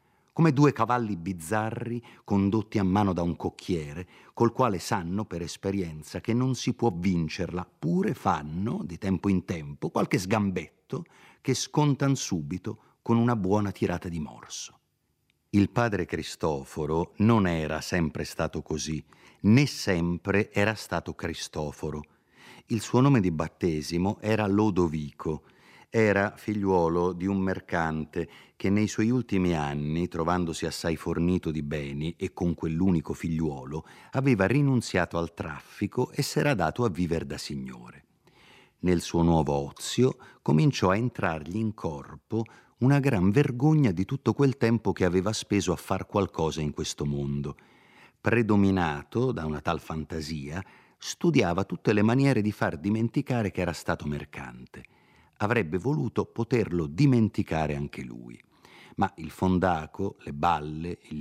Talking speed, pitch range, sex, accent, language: 135 wpm, 80-110 Hz, male, native, Italian